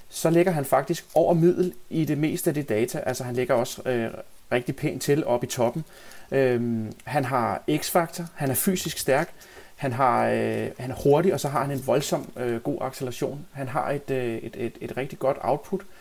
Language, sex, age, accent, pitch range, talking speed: Danish, male, 30-49, native, 125-155 Hz, 210 wpm